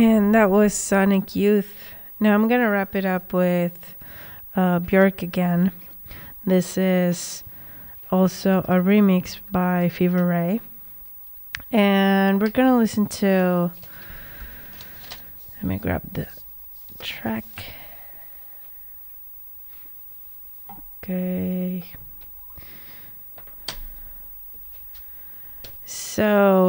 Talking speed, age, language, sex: 85 wpm, 20-39, English, female